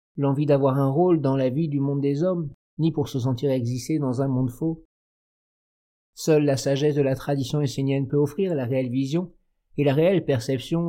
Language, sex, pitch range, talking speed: French, male, 135-160 Hz, 200 wpm